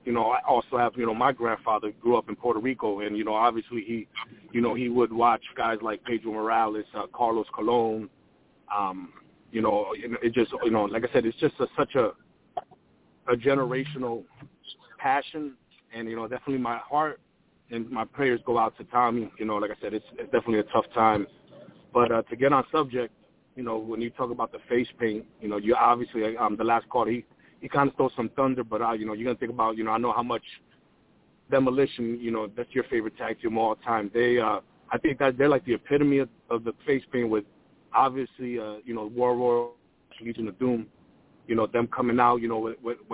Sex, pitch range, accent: male, 110-125 Hz, American